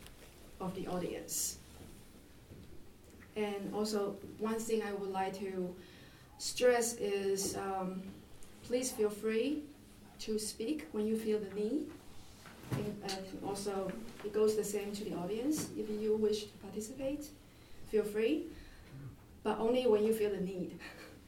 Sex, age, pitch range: female, 30-49, 190-220 Hz